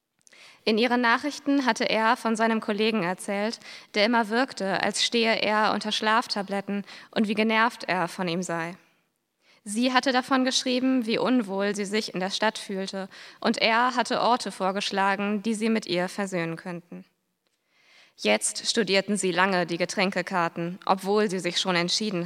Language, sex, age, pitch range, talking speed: German, female, 20-39, 180-225 Hz, 155 wpm